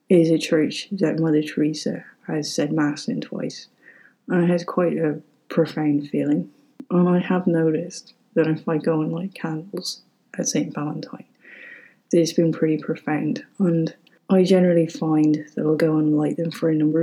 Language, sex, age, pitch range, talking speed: English, female, 30-49, 155-185 Hz, 175 wpm